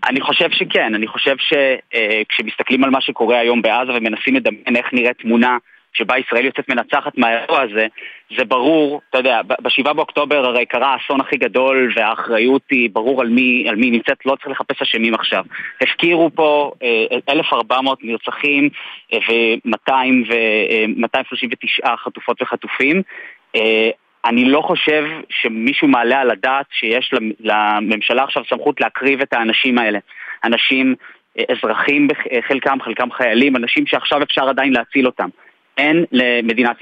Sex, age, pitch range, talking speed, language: male, 20-39, 120-145 Hz, 135 wpm, Hebrew